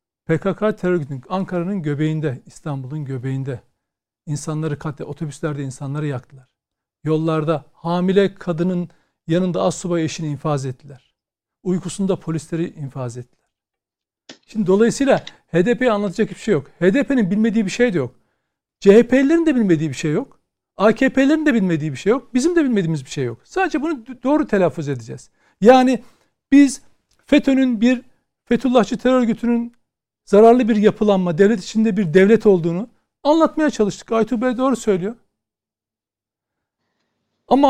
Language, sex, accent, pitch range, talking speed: Turkish, male, native, 160-245 Hz, 130 wpm